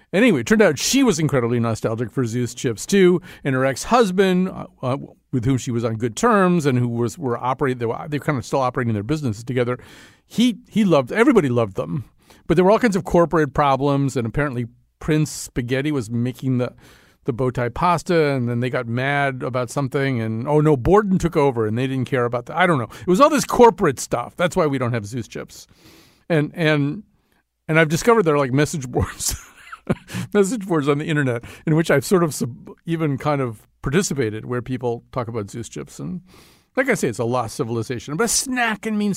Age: 50-69